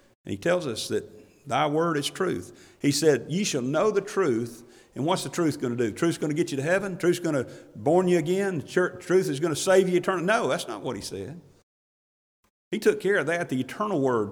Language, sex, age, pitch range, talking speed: English, male, 50-69, 140-205 Hz, 240 wpm